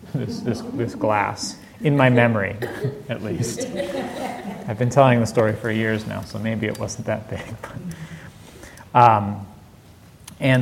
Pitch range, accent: 110-170 Hz, American